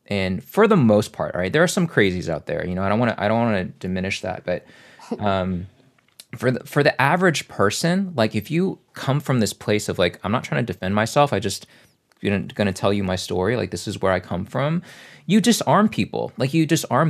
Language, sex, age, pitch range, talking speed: English, male, 20-39, 95-125 Hz, 235 wpm